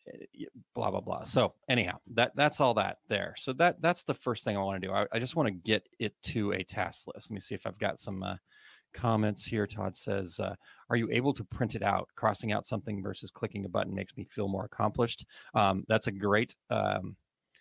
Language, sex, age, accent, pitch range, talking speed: English, male, 30-49, American, 95-115 Hz, 230 wpm